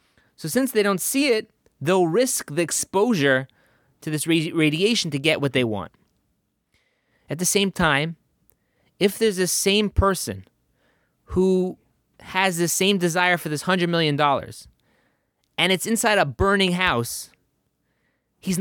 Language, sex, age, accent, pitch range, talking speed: English, male, 30-49, American, 145-185 Hz, 145 wpm